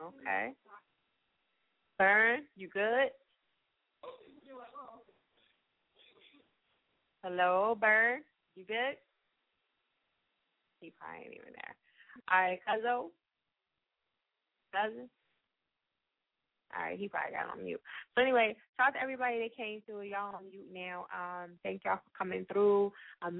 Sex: female